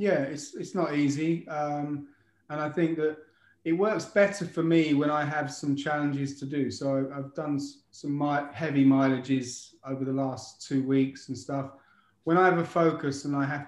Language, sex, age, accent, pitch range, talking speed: English, male, 30-49, British, 130-150 Hz, 195 wpm